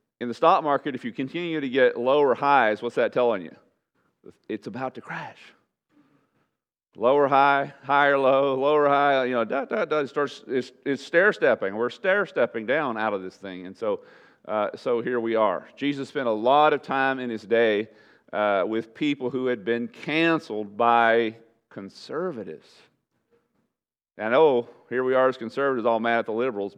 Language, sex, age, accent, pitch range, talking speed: English, male, 40-59, American, 110-140 Hz, 180 wpm